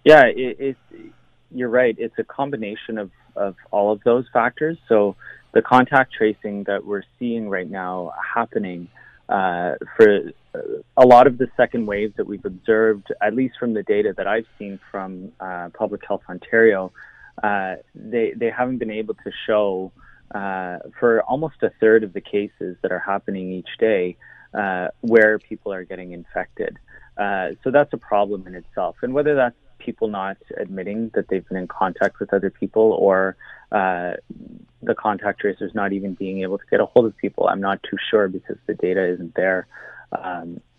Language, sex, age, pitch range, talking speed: English, male, 30-49, 95-120 Hz, 180 wpm